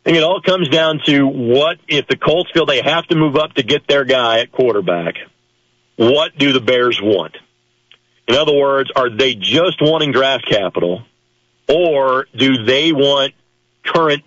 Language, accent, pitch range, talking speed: English, American, 120-155 Hz, 170 wpm